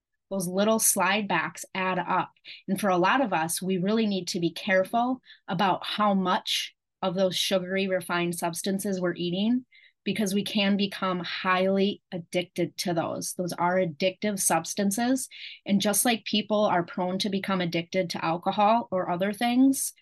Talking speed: 160 wpm